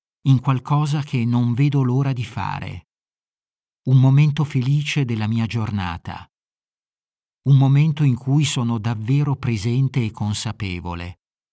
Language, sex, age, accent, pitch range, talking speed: Italian, male, 50-69, native, 105-135 Hz, 120 wpm